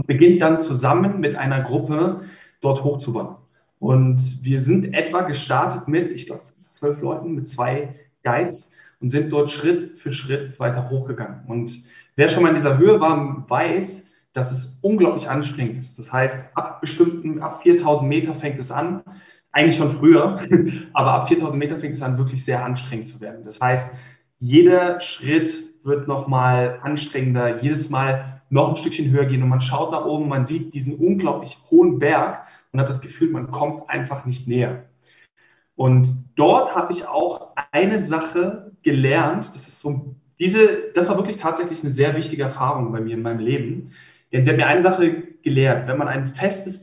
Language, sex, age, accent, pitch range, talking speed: German, male, 10-29, German, 130-165 Hz, 180 wpm